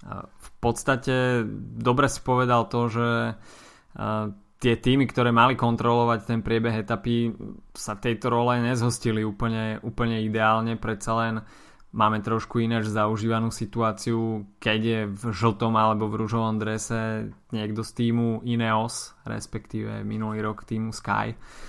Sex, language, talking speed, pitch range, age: male, Slovak, 125 wpm, 110-115 Hz, 20-39